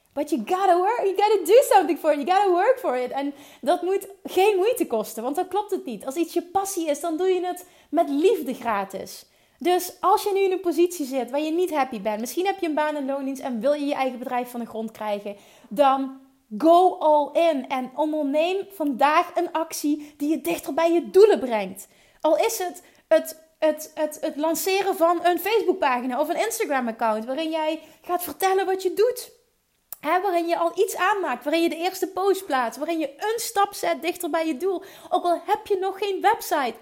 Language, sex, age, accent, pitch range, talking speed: Dutch, female, 30-49, Dutch, 275-365 Hz, 215 wpm